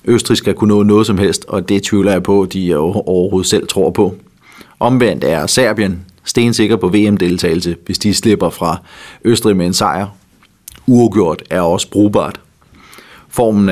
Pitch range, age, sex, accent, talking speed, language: 100-120 Hz, 30-49, male, native, 155 wpm, Danish